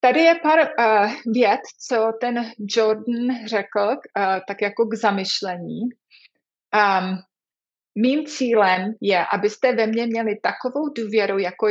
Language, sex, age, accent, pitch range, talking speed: Czech, female, 30-49, native, 205-240 Hz, 115 wpm